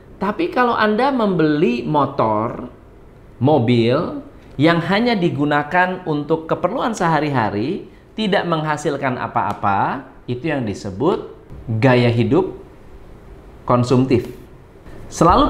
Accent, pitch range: native, 125-185 Hz